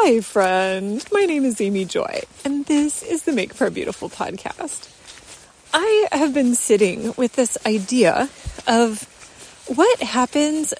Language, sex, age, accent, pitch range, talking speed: English, female, 30-49, American, 205-280 Hz, 145 wpm